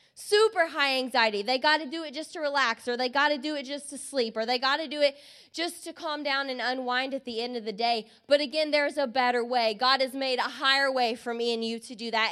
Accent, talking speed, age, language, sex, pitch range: American, 280 wpm, 20-39, English, female, 250-305 Hz